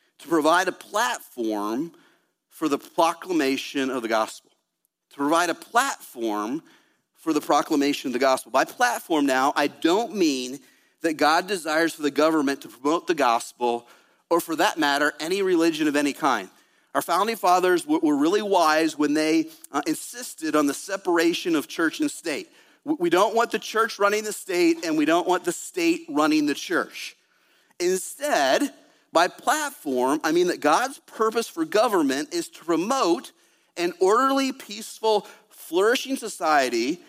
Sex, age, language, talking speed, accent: male, 40-59, English, 155 wpm, American